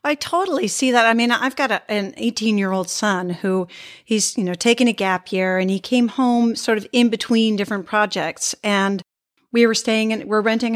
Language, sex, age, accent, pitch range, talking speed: English, female, 40-59, American, 200-245 Hz, 220 wpm